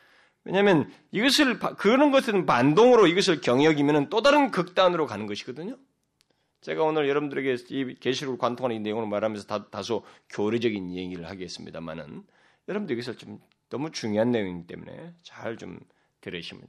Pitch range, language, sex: 90-130 Hz, Korean, male